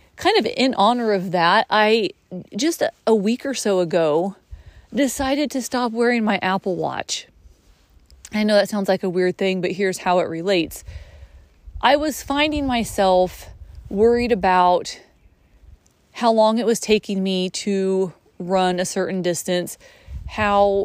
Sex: female